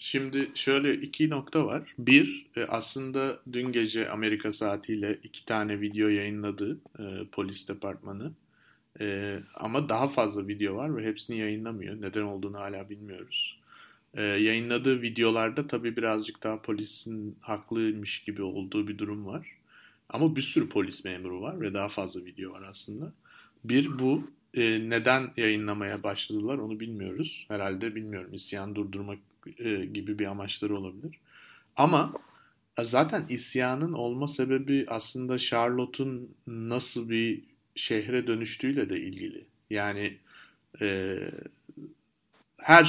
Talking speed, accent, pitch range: 115 wpm, native, 105-130 Hz